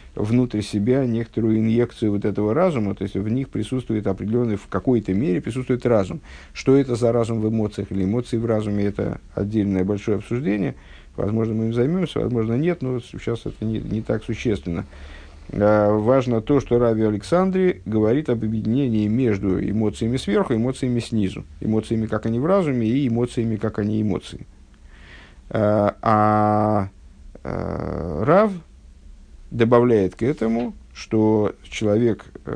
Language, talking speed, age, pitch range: Russian, 145 wpm, 50-69, 100-120 Hz